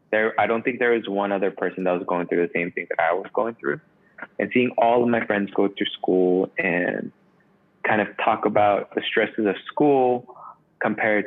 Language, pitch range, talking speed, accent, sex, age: English, 95-120 Hz, 215 wpm, American, male, 20-39